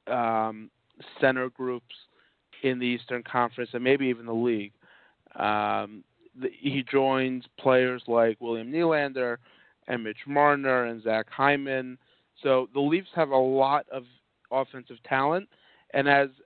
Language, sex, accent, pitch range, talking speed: English, male, American, 120-140 Hz, 135 wpm